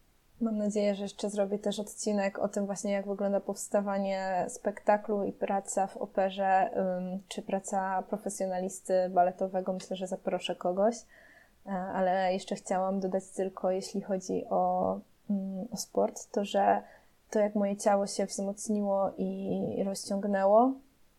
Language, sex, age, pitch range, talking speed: Polish, female, 20-39, 190-220 Hz, 130 wpm